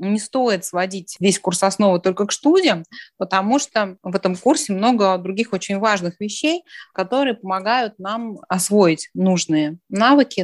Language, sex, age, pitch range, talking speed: Russian, female, 30-49, 165-215 Hz, 145 wpm